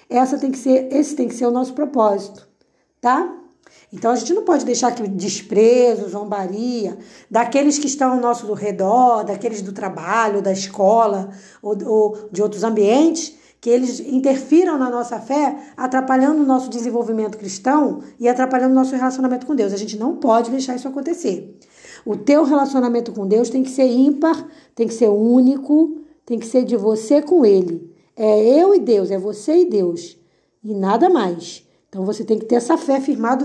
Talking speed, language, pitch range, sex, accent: 175 wpm, Portuguese, 215-290 Hz, female, Brazilian